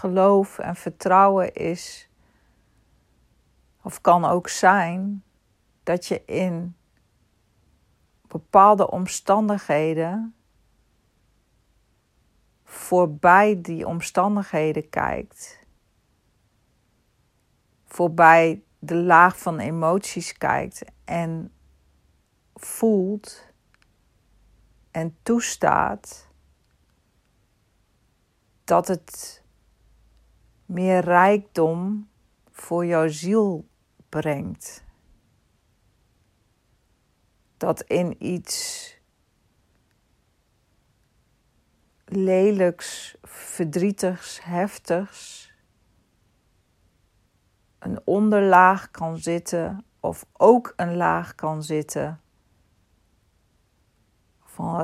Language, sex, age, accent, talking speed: English, female, 40-59, Dutch, 55 wpm